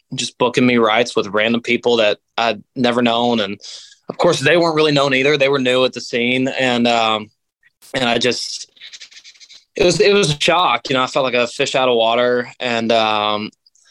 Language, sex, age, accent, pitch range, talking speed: English, male, 20-39, American, 115-140 Hz, 205 wpm